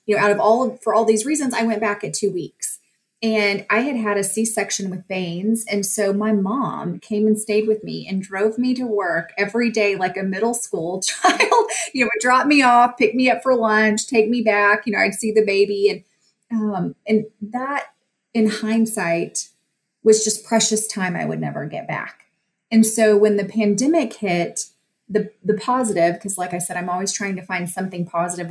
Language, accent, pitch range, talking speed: English, American, 185-225 Hz, 210 wpm